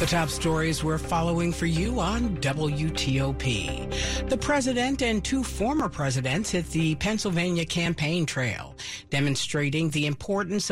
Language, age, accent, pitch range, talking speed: English, 50-69, American, 145-195 Hz, 130 wpm